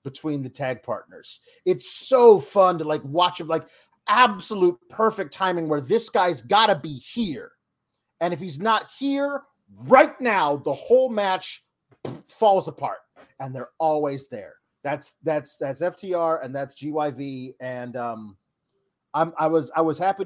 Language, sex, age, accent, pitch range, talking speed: English, male, 30-49, American, 150-225 Hz, 155 wpm